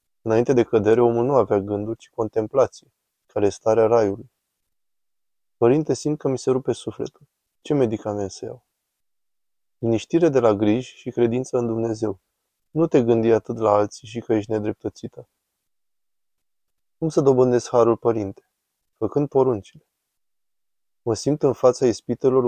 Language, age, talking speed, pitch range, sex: Romanian, 20-39, 145 wpm, 110-130 Hz, male